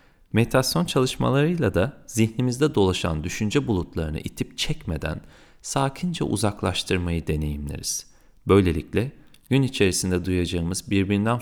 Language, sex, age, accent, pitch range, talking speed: Turkish, male, 40-59, native, 85-115 Hz, 90 wpm